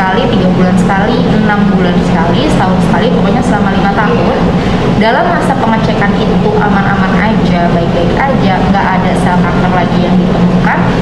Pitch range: 185-215 Hz